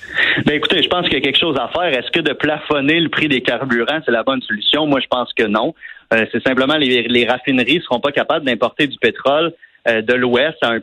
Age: 30-49